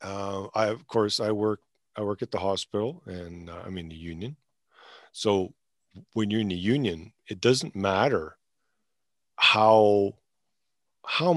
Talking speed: 150 wpm